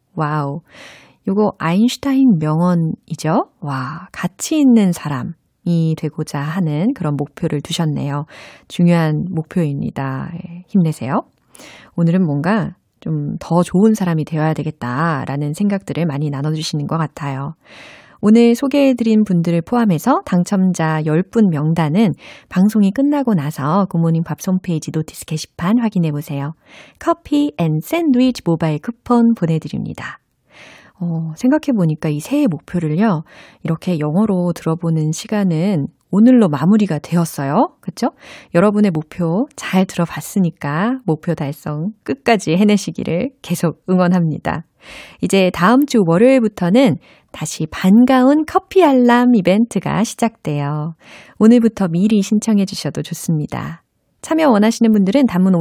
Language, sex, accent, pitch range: Korean, female, native, 160-225 Hz